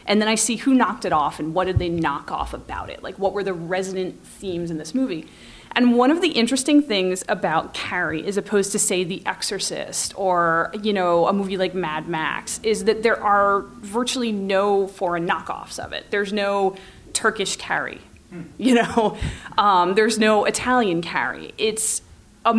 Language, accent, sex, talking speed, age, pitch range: English, American, female, 185 wpm, 30-49, 180-215 Hz